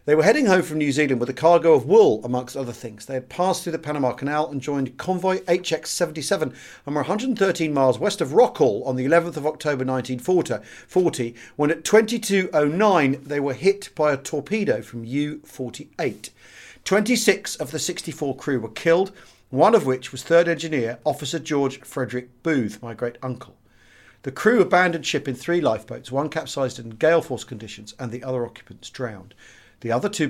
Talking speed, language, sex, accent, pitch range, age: 180 wpm, English, male, British, 125-165 Hz, 40-59